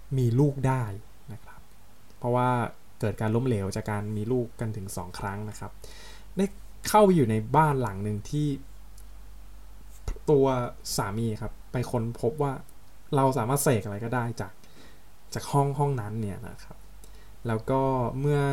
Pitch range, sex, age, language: 105-135 Hz, male, 20-39, Thai